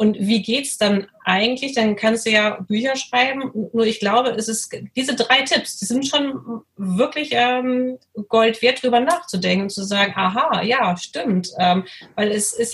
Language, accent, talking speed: German, German, 185 wpm